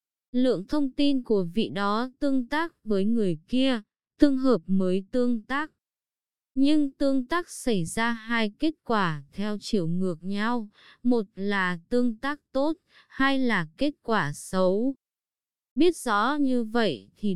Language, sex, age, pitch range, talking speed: Vietnamese, female, 20-39, 195-260 Hz, 150 wpm